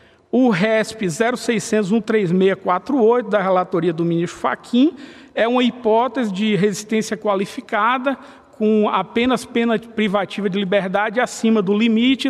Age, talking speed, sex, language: 50-69, 110 wpm, male, Portuguese